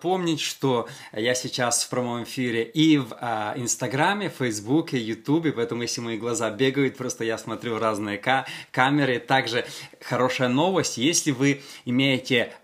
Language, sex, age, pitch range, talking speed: Russian, male, 20-39, 125-150 Hz, 145 wpm